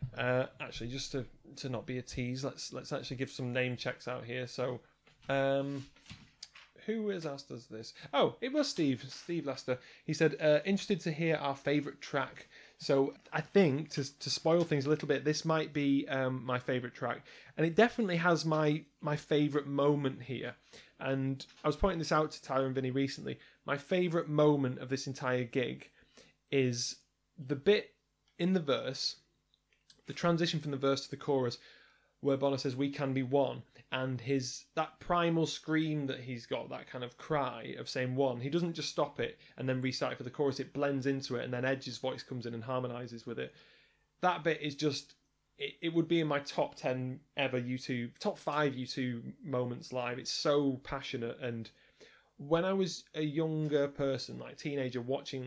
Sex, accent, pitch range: male, British, 130-155 Hz